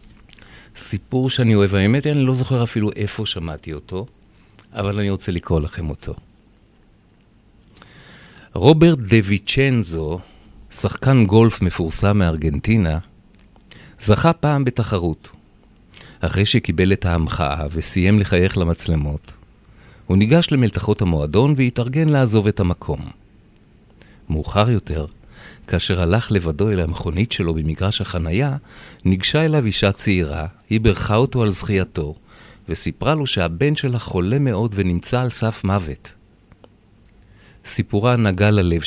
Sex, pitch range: male, 90-115 Hz